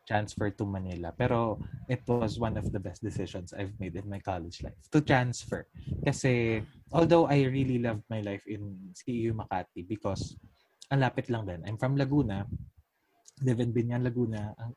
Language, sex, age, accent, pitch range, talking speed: Filipino, male, 20-39, native, 100-130 Hz, 165 wpm